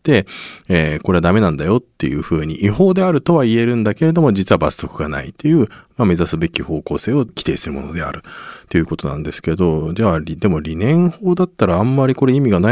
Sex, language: male, Japanese